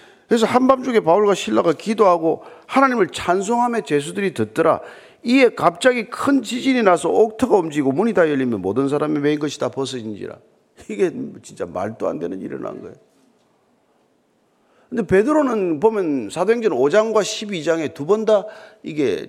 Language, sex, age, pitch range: Korean, male, 40-59, 175-260 Hz